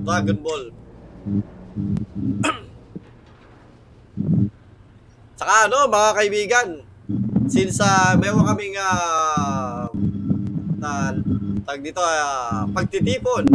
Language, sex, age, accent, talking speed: Filipino, male, 20-39, native, 70 wpm